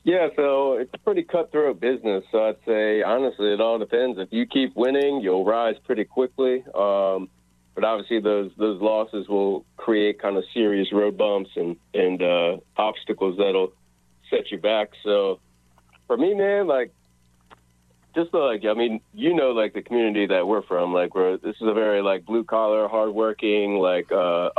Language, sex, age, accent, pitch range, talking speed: English, male, 40-59, American, 85-110 Hz, 180 wpm